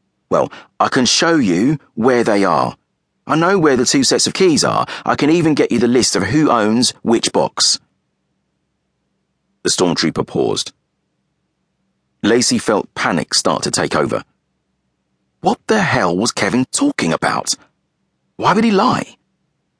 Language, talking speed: English, 150 wpm